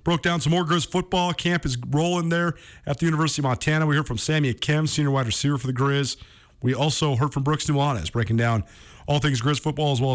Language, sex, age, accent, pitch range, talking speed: English, male, 40-59, American, 115-150 Hz, 235 wpm